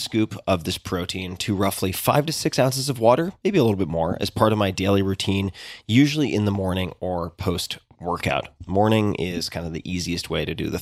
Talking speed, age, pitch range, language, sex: 215 wpm, 30-49, 95-130 Hz, English, male